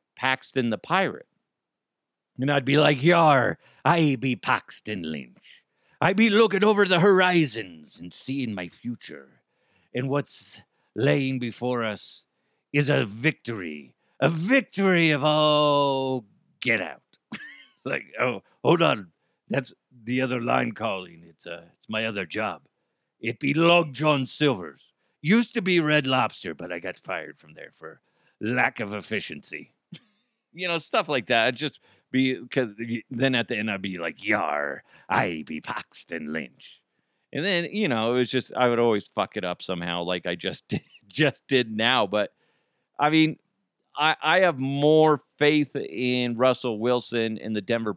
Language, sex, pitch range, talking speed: English, male, 110-150 Hz, 160 wpm